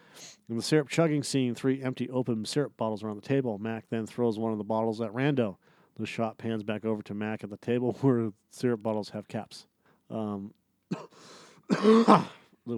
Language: English